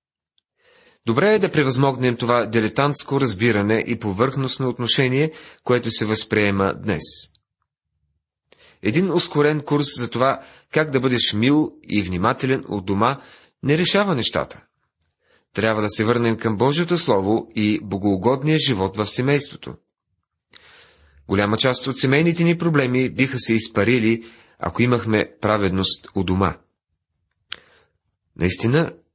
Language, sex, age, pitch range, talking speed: Bulgarian, male, 30-49, 100-135 Hz, 115 wpm